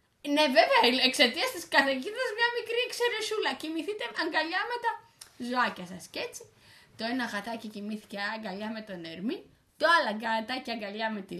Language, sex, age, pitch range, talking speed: Greek, female, 20-39, 205-325 Hz, 155 wpm